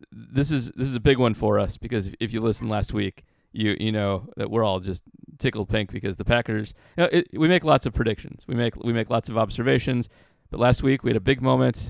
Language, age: English, 40-59